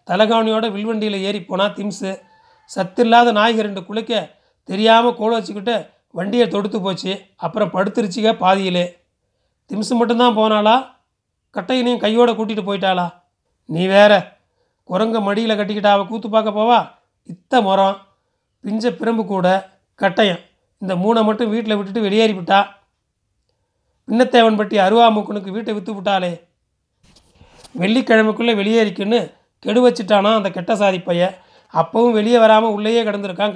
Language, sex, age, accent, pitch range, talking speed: Tamil, male, 40-59, native, 195-230 Hz, 110 wpm